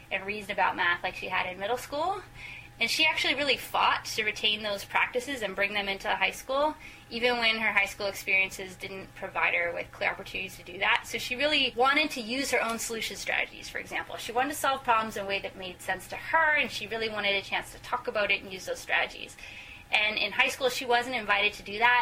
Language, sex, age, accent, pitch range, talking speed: English, female, 20-39, American, 195-245 Hz, 245 wpm